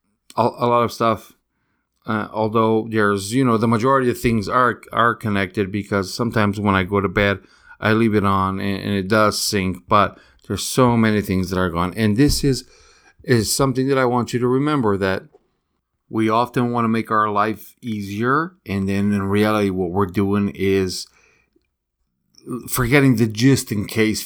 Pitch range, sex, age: 100-115 Hz, male, 40-59